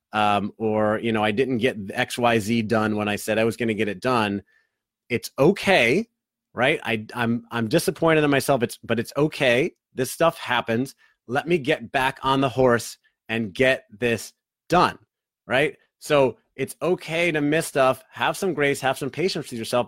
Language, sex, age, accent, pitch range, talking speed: English, male, 30-49, American, 110-135 Hz, 190 wpm